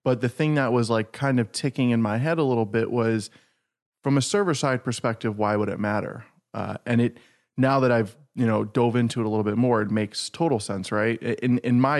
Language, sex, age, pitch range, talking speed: English, male, 20-39, 110-125 Hz, 240 wpm